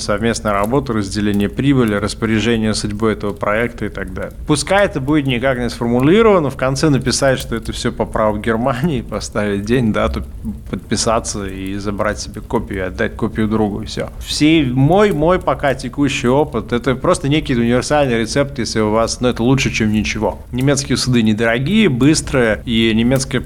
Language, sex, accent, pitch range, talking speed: Russian, male, native, 105-130 Hz, 165 wpm